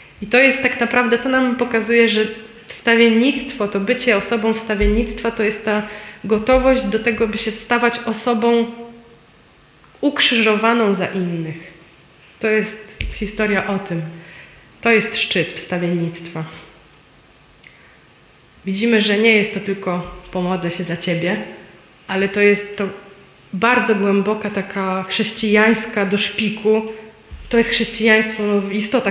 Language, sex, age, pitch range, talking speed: Polish, female, 20-39, 185-230 Hz, 125 wpm